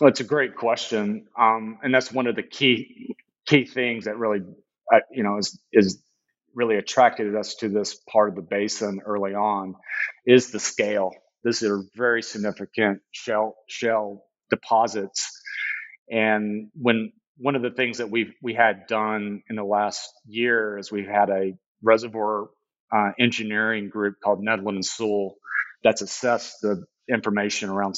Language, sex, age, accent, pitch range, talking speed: English, male, 40-59, American, 100-115 Hz, 160 wpm